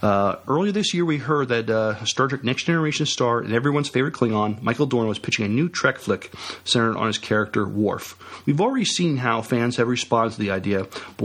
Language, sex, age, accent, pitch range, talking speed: English, male, 40-59, American, 115-145 Hz, 220 wpm